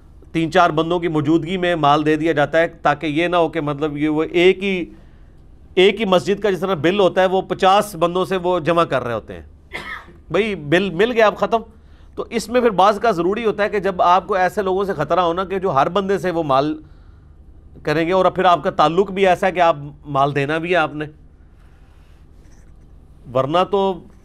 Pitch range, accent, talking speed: 130-190 Hz, Indian, 210 wpm